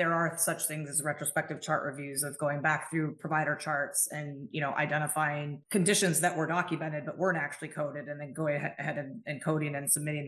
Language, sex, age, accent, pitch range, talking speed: English, female, 30-49, American, 145-160 Hz, 200 wpm